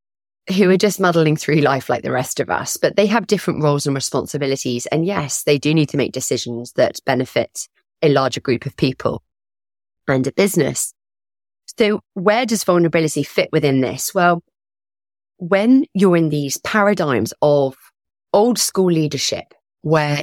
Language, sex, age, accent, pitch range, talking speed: English, female, 30-49, British, 130-185 Hz, 160 wpm